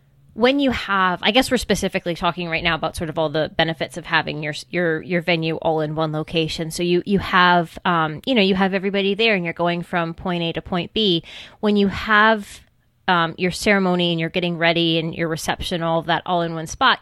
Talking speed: 230 wpm